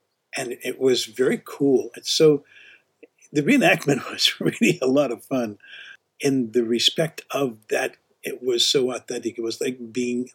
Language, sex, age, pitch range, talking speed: English, male, 50-69, 120-140 Hz, 160 wpm